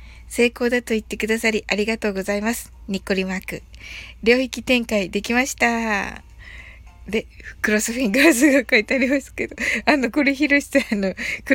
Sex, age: female, 20-39